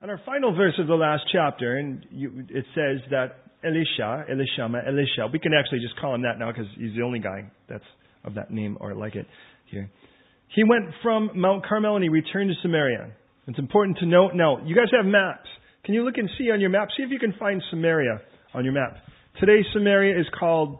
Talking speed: 220 wpm